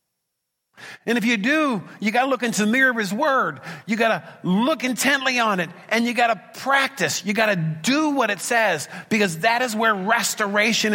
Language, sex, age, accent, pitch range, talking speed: English, male, 50-69, American, 145-205 Hz, 210 wpm